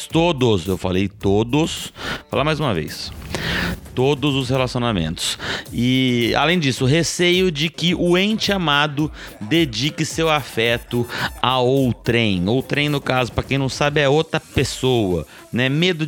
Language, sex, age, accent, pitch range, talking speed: Portuguese, male, 30-49, Brazilian, 110-165 Hz, 140 wpm